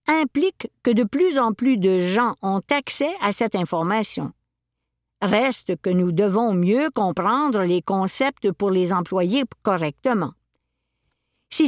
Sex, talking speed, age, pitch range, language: female, 135 wpm, 50-69, 185-260 Hz, French